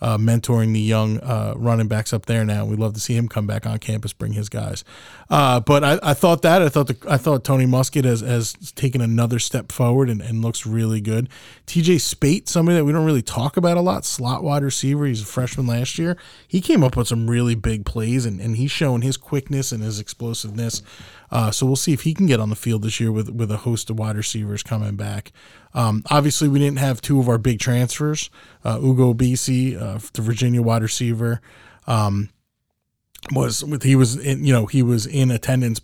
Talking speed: 225 wpm